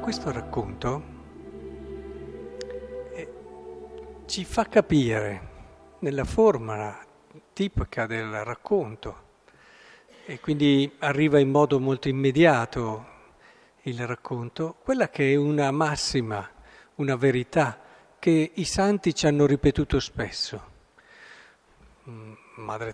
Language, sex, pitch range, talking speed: Italian, male, 125-185 Hz, 90 wpm